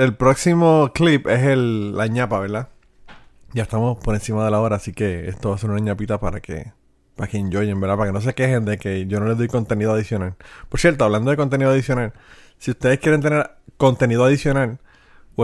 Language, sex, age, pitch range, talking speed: Spanish, male, 30-49, 105-130 Hz, 215 wpm